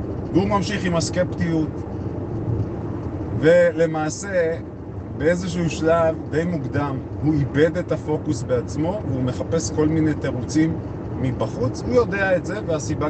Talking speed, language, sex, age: 115 wpm, Hebrew, male, 30-49